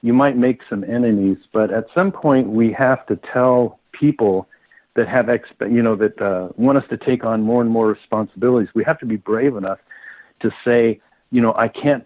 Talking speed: 205 wpm